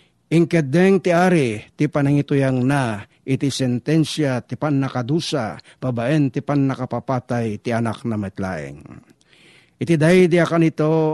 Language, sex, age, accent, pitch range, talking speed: Filipino, male, 50-69, native, 125-160 Hz, 130 wpm